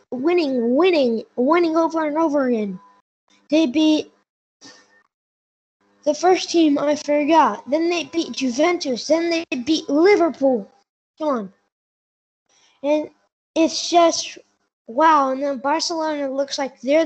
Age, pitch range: 20-39, 235-305 Hz